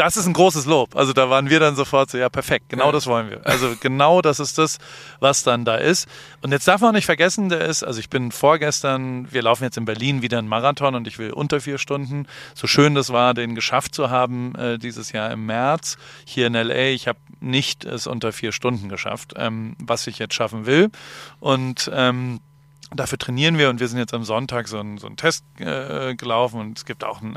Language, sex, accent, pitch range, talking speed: German, male, German, 115-140 Hz, 230 wpm